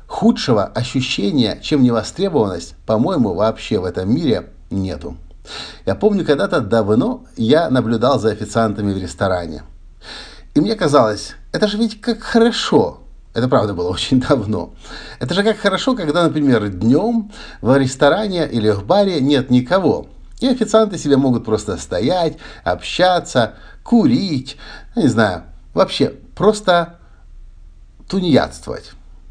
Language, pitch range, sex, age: Russian, 105-160 Hz, male, 50-69